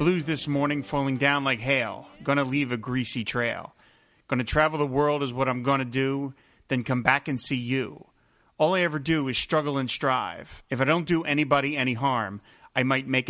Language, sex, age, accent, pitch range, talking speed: English, male, 40-59, American, 125-150 Hz, 205 wpm